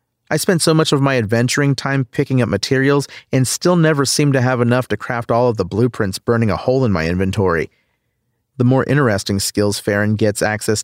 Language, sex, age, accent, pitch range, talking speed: English, male, 40-59, American, 105-130 Hz, 205 wpm